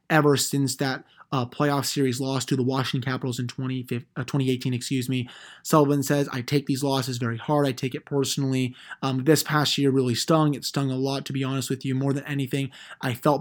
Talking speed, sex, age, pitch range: 220 wpm, male, 20-39, 130-145 Hz